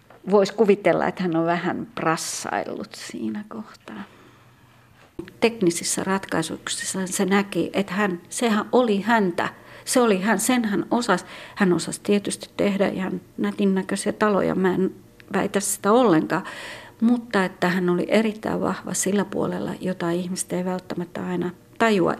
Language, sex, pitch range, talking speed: Finnish, female, 170-200 Hz, 130 wpm